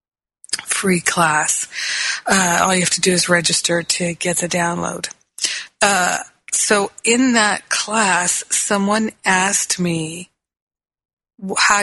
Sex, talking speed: female, 115 wpm